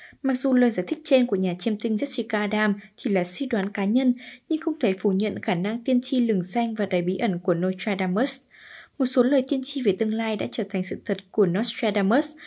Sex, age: female, 10-29